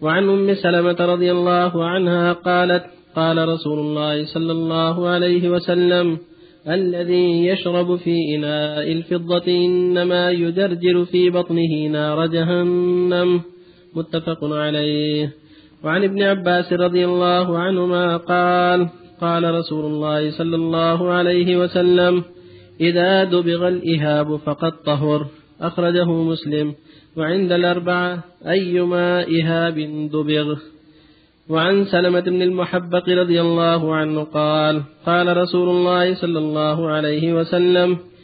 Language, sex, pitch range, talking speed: Arabic, male, 155-180 Hz, 105 wpm